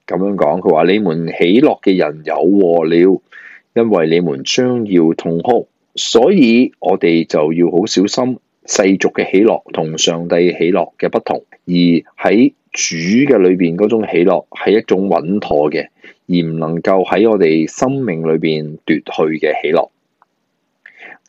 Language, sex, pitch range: Chinese, male, 80-105 Hz